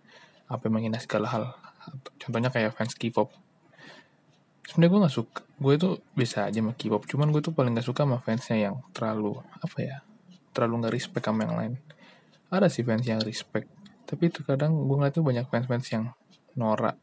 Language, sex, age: English, male, 20-39